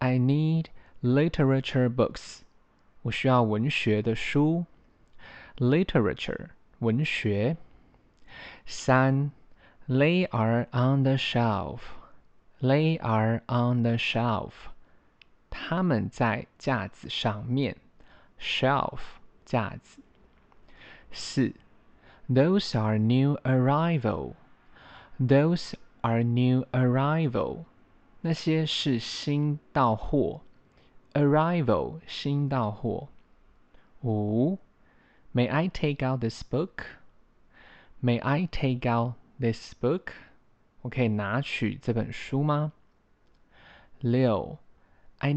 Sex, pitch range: male, 115-145 Hz